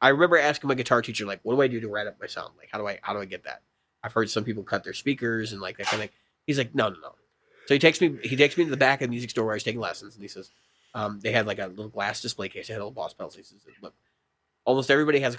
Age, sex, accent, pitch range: 30-49, male, American, 105-130 Hz